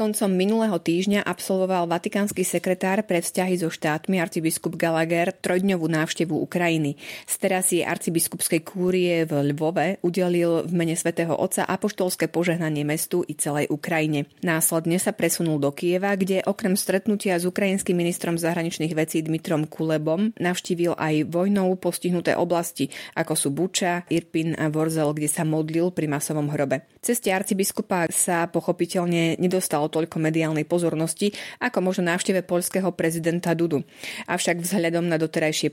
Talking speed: 140 wpm